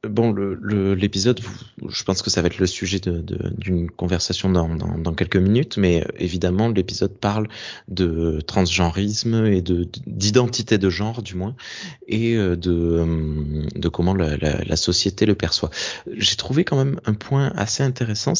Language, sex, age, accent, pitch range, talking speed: French, male, 20-39, French, 90-115 Hz, 175 wpm